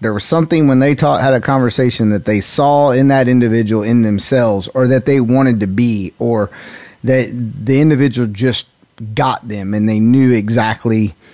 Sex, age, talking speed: male, 30-49, 180 wpm